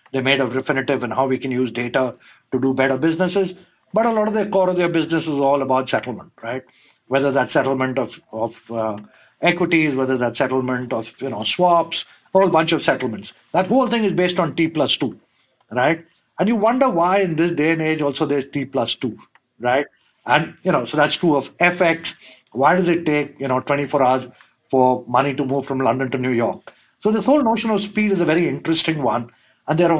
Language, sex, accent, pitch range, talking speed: English, male, Indian, 130-170 Hz, 225 wpm